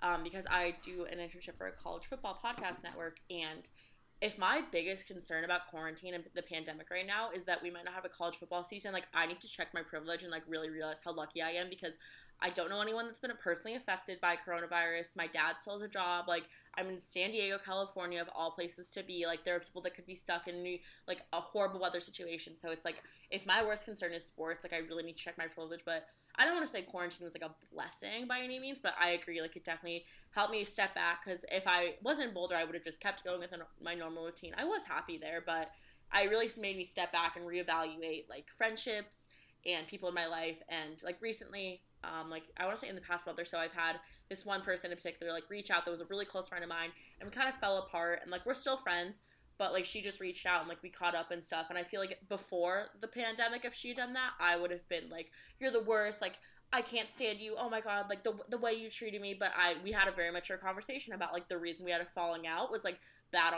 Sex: female